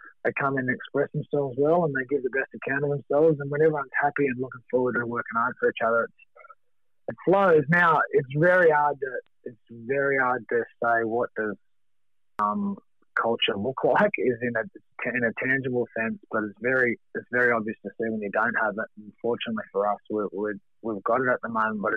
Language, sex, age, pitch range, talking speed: English, male, 30-49, 105-130 Hz, 215 wpm